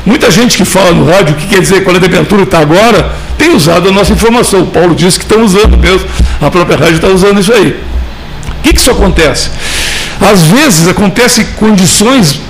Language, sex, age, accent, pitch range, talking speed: Portuguese, male, 60-79, Brazilian, 175-225 Hz, 205 wpm